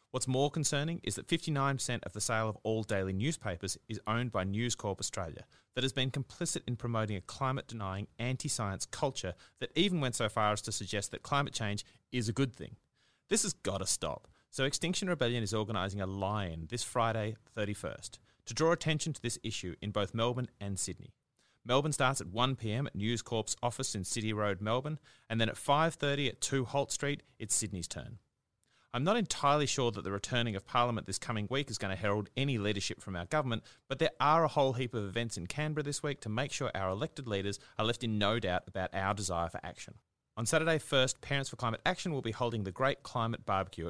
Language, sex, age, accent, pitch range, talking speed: English, male, 30-49, Australian, 100-135 Hz, 215 wpm